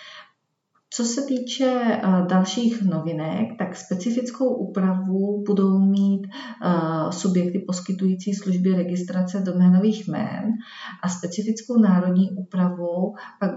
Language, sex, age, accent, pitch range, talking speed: Czech, female, 40-59, native, 180-205 Hz, 95 wpm